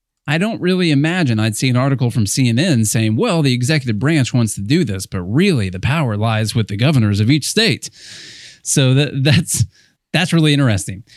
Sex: male